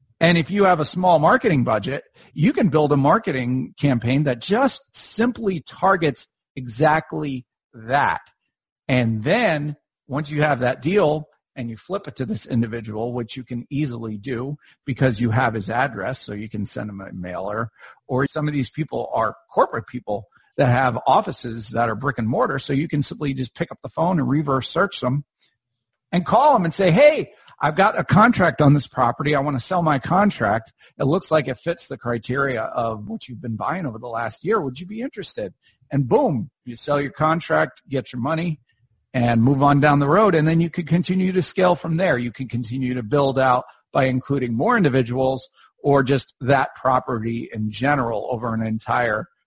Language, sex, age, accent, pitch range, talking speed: English, male, 50-69, American, 120-160 Hz, 195 wpm